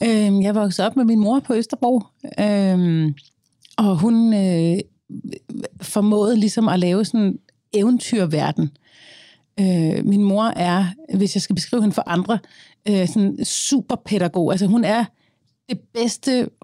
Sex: female